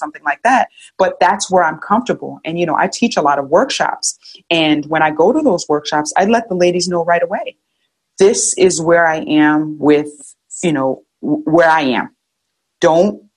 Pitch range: 150-195 Hz